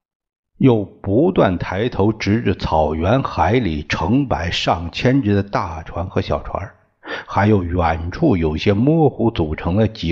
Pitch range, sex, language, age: 85-120 Hz, male, Chinese, 60-79